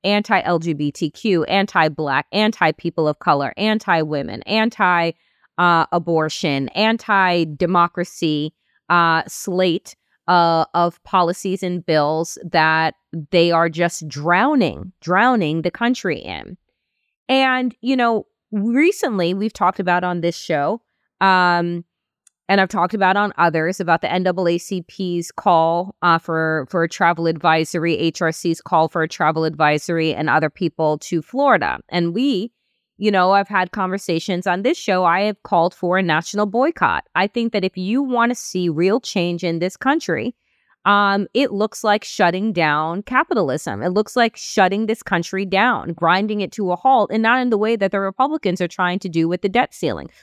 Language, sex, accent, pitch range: English, female, American, 170-215 Hz